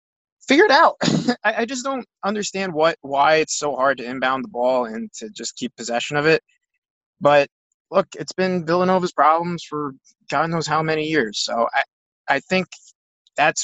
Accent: American